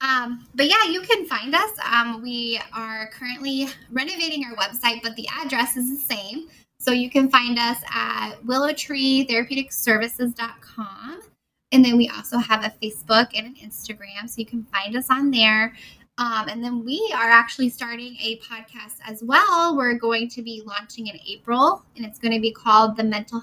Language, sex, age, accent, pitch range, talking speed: English, female, 10-29, American, 220-265 Hz, 180 wpm